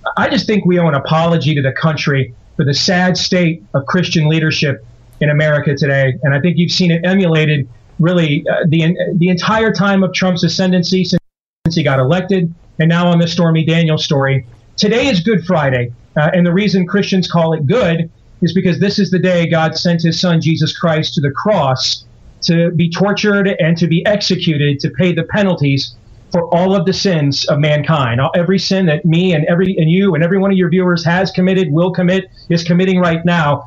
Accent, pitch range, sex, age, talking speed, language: American, 155-185 Hz, male, 30-49, 205 wpm, English